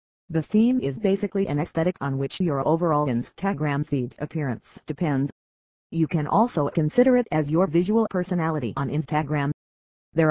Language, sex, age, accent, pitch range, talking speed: English, female, 40-59, American, 140-185 Hz, 150 wpm